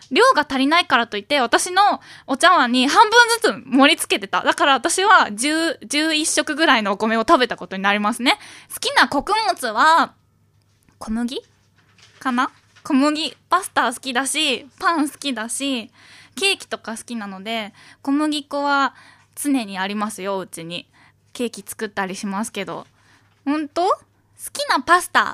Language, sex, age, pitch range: Japanese, female, 10-29, 235-345 Hz